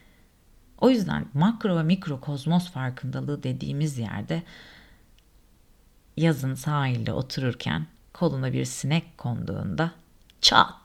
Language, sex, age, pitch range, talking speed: Turkish, female, 40-59, 130-165 Hz, 95 wpm